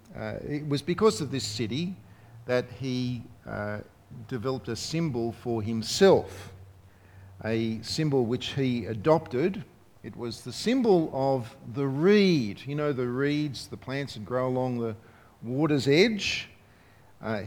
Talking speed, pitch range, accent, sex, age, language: 135 wpm, 110-145 Hz, Australian, male, 50-69, English